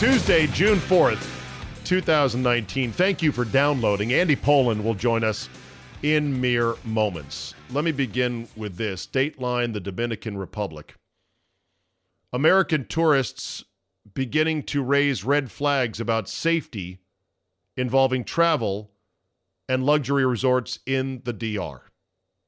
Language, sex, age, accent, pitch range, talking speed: English, male, 40-59, American, 105-145 Hz, 110 wpm